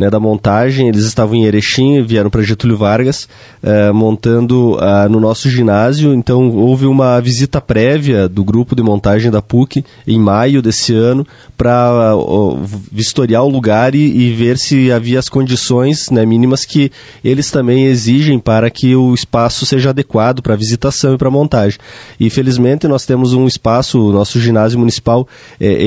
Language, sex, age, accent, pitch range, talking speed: Portuguese, male, 20-39, Brazilian, 110-135 Hz, 165 wpm